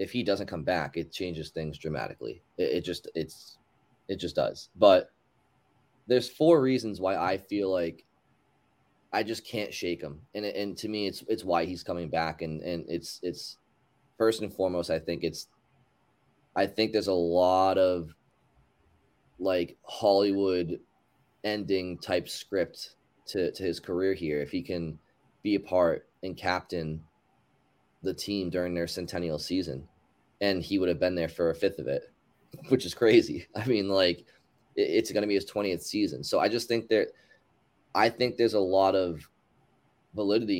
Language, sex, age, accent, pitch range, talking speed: English, male, 20-39, American, 85-105 Hz, 170 wpm